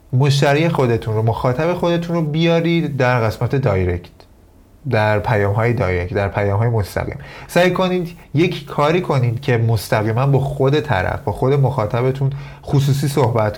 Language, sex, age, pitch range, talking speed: Persian, male, 30-49, 105-140 Hz, 145 wpm